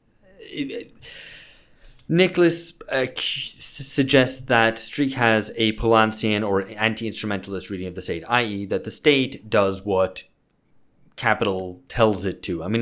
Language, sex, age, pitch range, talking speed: English, male, 20-39, 90-110 Hz, 120 wpm